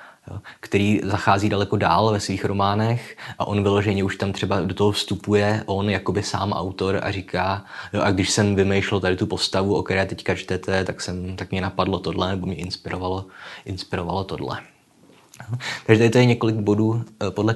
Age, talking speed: 20-39, 175 wpm